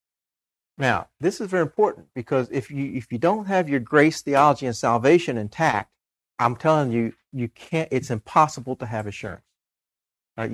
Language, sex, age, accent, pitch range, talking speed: English, male, 40-59, American, 115-165 Hz, 165 wpm